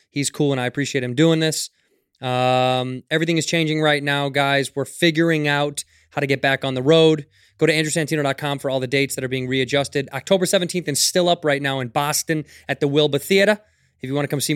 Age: 20-39